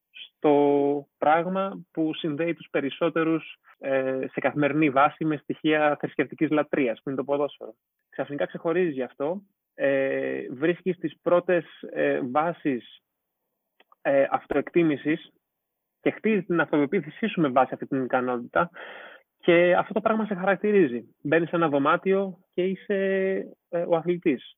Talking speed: 120 wpm